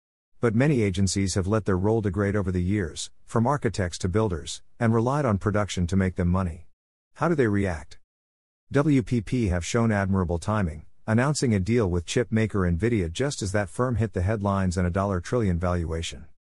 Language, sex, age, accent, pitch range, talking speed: English, male, 50-69, American, 90-115 Hz, 185 wpm